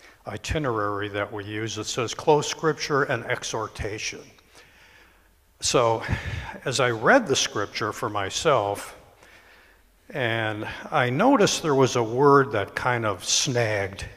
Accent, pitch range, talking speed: American, 115-155 Hz, 125 wpm